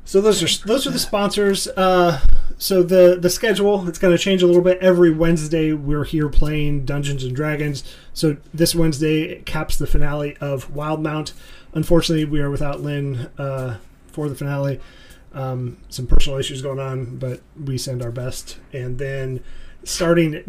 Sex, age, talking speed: male, 30-49, 175 wpm